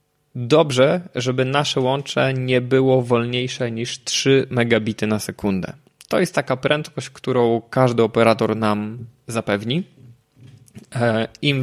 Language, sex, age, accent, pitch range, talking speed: Polish, male, 20-39, native, 115-140 Hz, 115 wpm